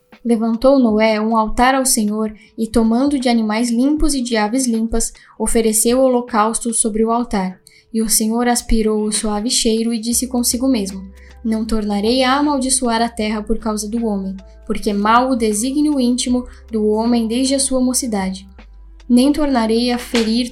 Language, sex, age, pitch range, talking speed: Portuguese, female, 10-29, 220-245 Hz, 170 wpm